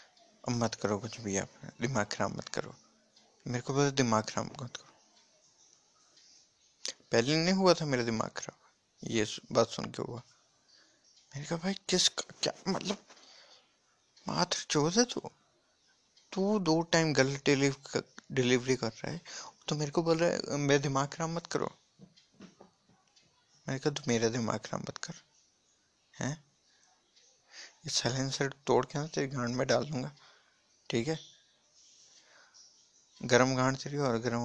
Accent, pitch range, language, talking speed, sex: native, 125-160 Hz, Hindi, 135 wpm, male